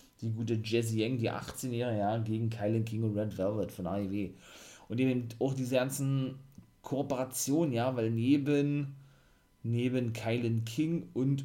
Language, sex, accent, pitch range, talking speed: German, male, German, 110-130 Hz, 150 wpm